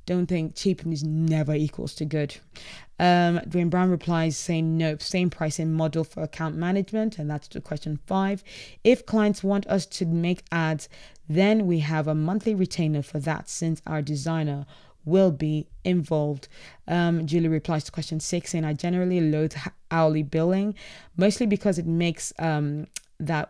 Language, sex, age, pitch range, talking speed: English, female, 20-39, 155-180 Hz, 165 wpm